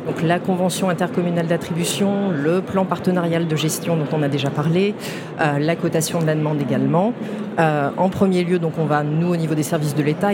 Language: French